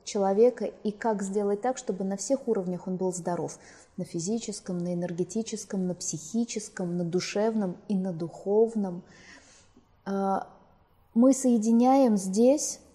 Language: Russian